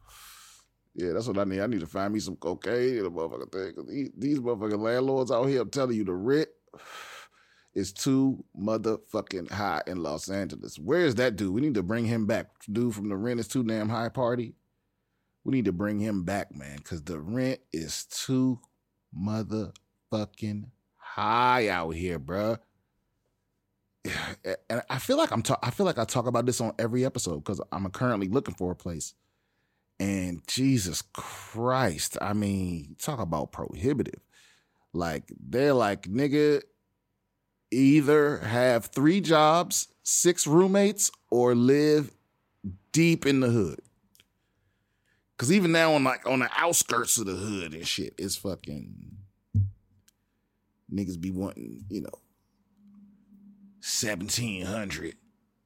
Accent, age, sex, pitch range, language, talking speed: American, 30-49, male, 95-130 Hz, English, 150 wpm